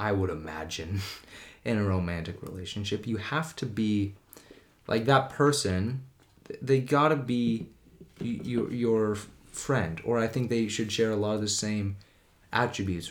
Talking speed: 145 wpm